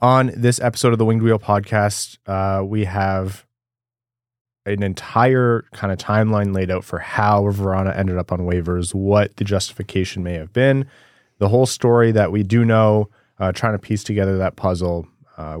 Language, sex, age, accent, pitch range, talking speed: English, male, 20-39, American, 95-110 Hz, 175 wpm